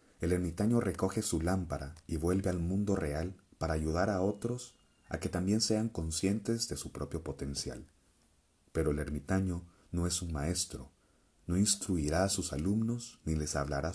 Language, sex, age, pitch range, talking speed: Spanish, male, 40-59, 75-95 Hz, 165 wpm